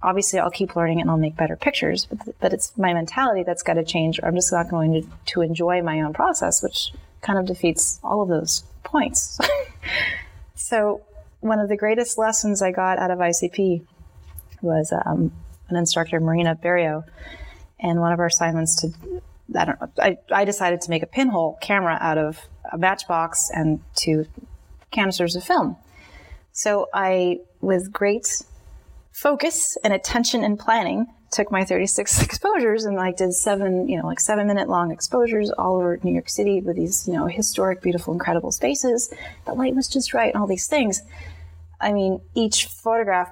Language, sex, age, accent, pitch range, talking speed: English, female, 30-49, American, 165-210 Hz, 185 wpm